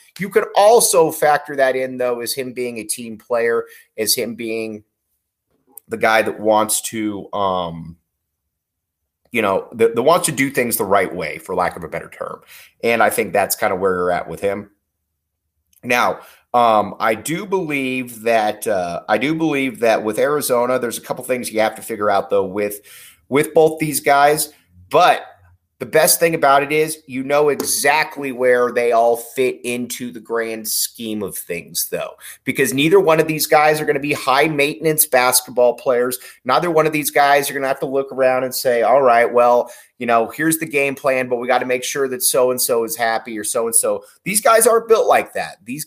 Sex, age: male, 30-49